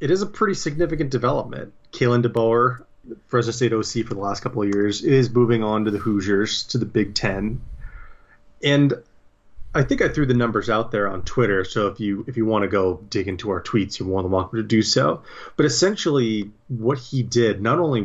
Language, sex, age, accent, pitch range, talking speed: English, male, 30-49, American, 100-130 Hz, 215 wpm